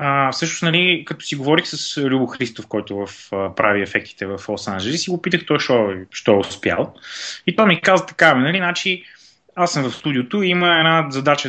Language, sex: Bulgarian, male